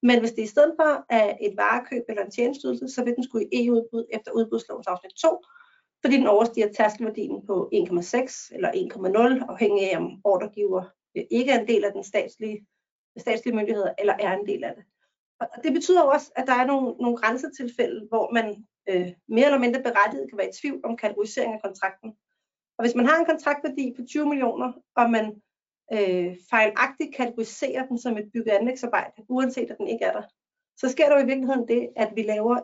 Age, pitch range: 40-59, 215-270 Hz